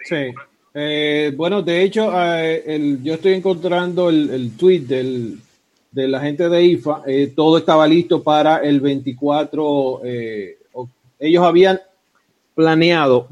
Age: 40-59